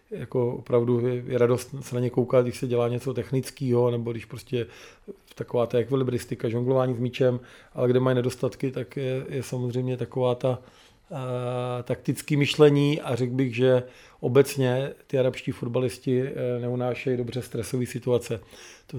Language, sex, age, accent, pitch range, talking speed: Czech, male, 40-59, native, 120-130 Hz, 150 wpm